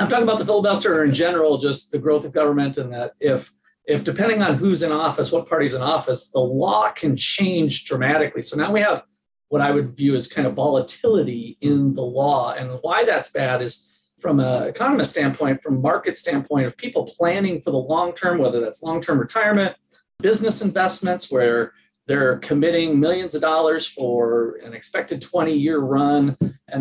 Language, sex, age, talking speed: English, male, 40-59, 190 wpm